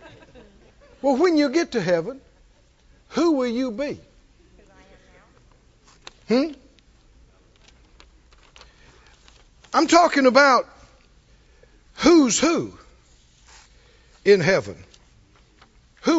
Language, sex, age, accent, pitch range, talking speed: English, male, 60-79, American, 205-260 Hz, 70 wpm